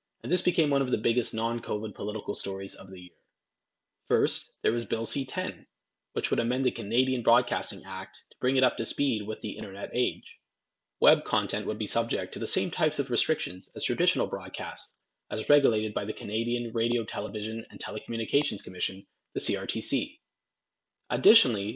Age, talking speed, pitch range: 20-39, 170 wpm, 110-140 Hz